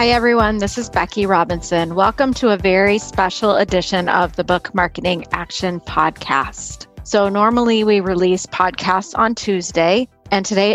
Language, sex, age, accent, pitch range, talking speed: English, female, 30-49, American, 180-205 Hz, 150 wpm